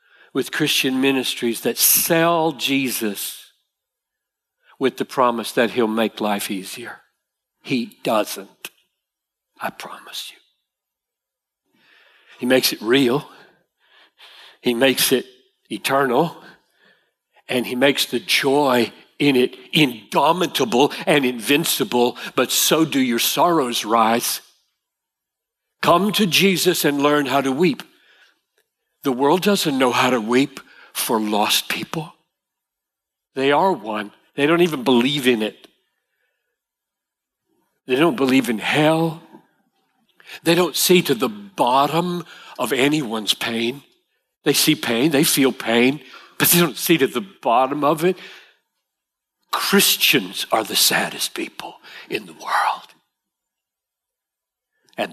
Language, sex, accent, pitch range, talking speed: English, male, American, 120-170 Hz, 120 wpm